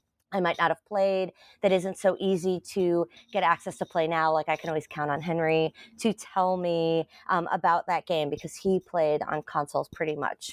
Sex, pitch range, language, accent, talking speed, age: female, 155-195 Hz, English, American, 205 wpm, 30-49